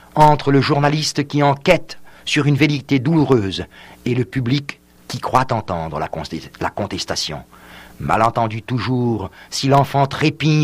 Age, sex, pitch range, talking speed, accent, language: 50-69, male, 90-130 Hz, 125 wpm, French, French